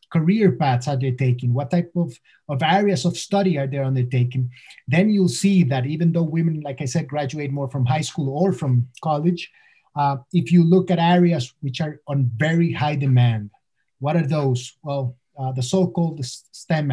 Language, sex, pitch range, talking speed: English, male, 125-165 Hz, 190 wpm